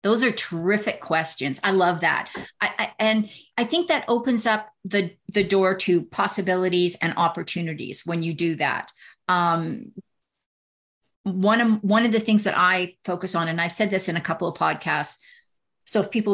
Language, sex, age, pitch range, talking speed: English, female, 50-69, 185-235 Hz, 180 wpm